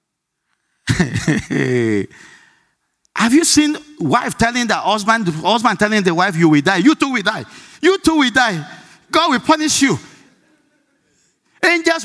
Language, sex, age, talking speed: English, male, 50-69, 135 wpm